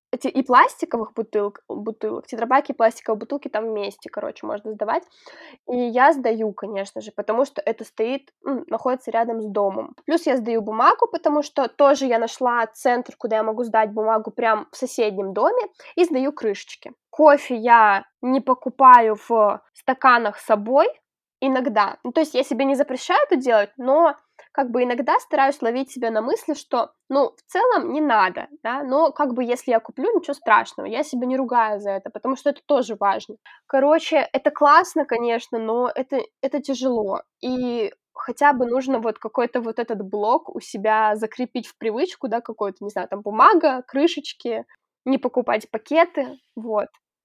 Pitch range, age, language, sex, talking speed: 225-285 Hz, 10-29, Russian, female, 170 wpm